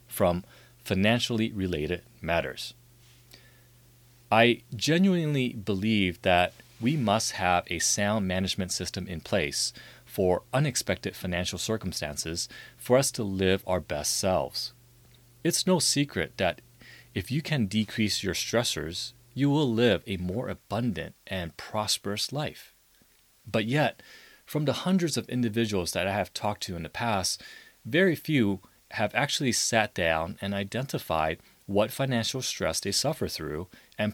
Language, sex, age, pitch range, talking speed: English, male, 30-49, 90-120 Hz, 135 wpm